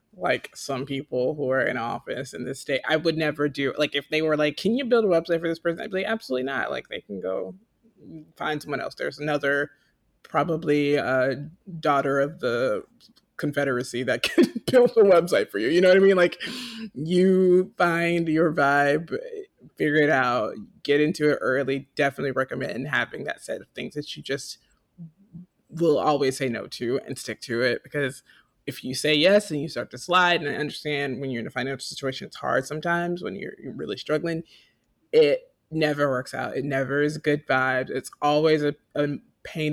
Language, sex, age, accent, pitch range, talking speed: English, male, 20-39, American, 135-170 Hz, 195 wpm